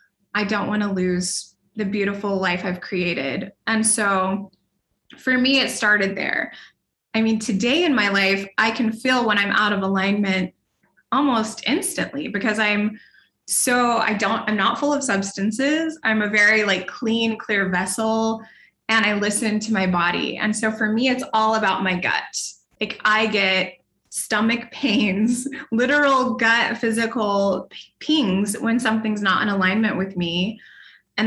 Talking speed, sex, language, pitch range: 155 wpm, female, English, 200-255 Hz